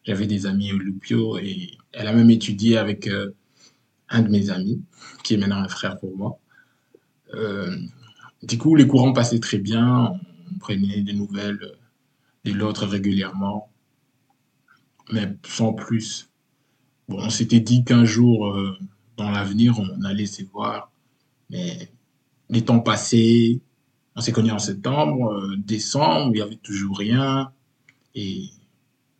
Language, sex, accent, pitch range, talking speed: French, male, French, 105-130 Hz, 145 wpm